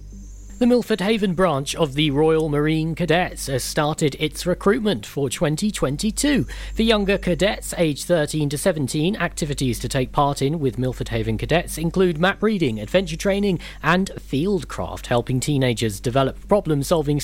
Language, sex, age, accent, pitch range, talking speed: English, male, 40-59, British, 135-195 Hz, 150 wpm